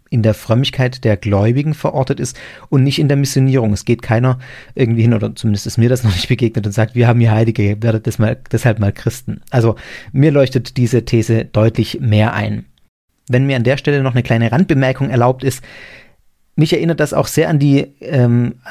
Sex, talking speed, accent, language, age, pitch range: male, 205 wpm, German, German, 40-59, 120-150 Hz